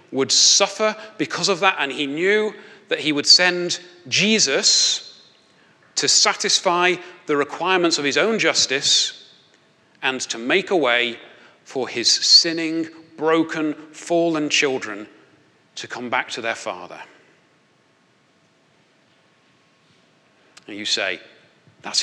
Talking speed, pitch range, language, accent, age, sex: 115 wpm, 130-175 Hz, English, British, 40-59, male